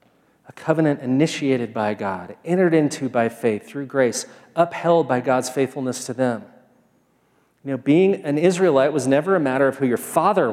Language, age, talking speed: English, 40-59, 170 wpm